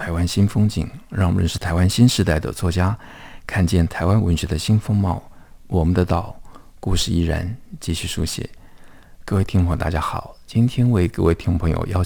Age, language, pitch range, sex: 50-69, Chinese, 80-90 Hz, male